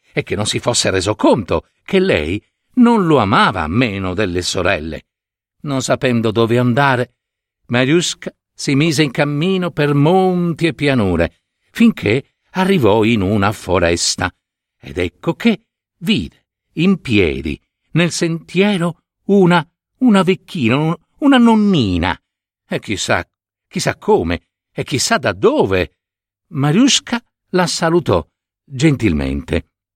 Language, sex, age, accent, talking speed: Italian, male, 60-79, native, 115 wpm